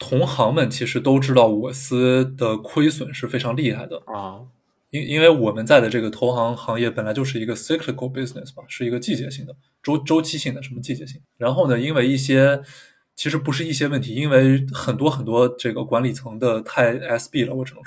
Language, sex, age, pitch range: Chinese, male, 20-39, 120-135 Hz